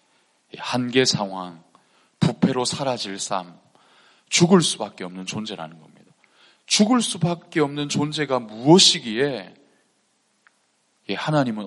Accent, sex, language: native, male, Korean